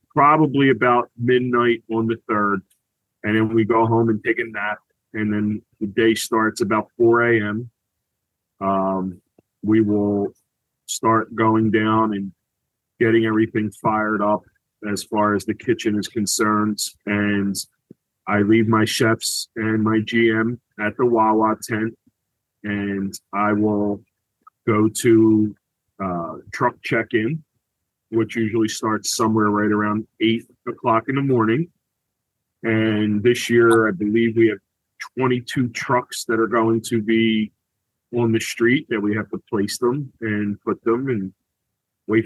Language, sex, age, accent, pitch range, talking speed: English, male, 30-49, American, 105-115 Hz, 140 wpm